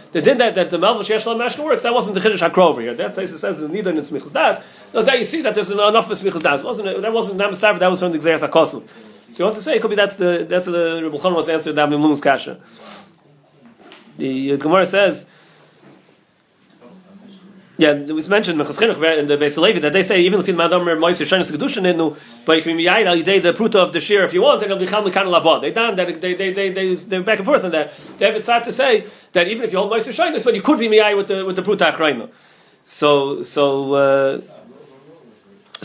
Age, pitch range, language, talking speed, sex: 30-49, 170-215 Hz, English, 255 wpm, male